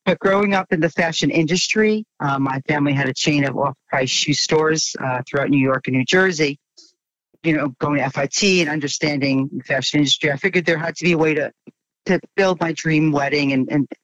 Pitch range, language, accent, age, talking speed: 140-170 Hz, English, American, 40-59, 220 wpm